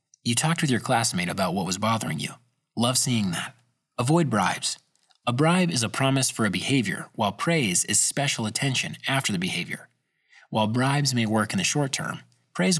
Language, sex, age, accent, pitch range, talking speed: English, male, 30-49, American, 110-150 Hz, 190 wpm